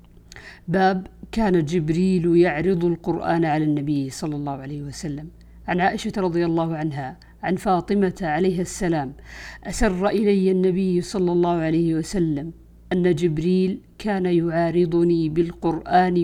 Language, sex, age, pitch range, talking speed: Arabic, female, 50-69, 155-180 Hz, 120 wpm